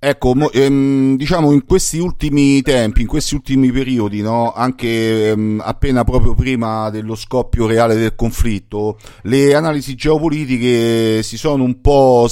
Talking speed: 140 wpm